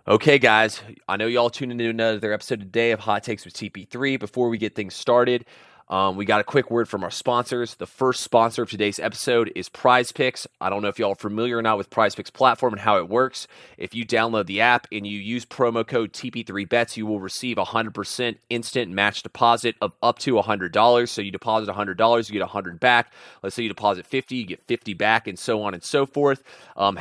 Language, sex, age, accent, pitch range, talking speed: English, male, 30-49, American, 105-120 Hz, 240 wpm